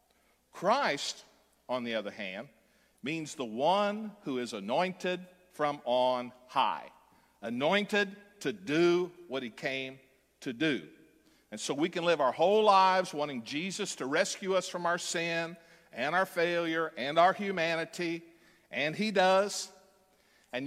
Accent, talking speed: American, 140 wpm